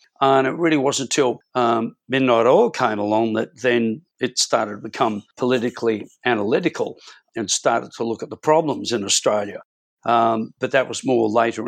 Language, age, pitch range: English, 50-69, 115-135 Hz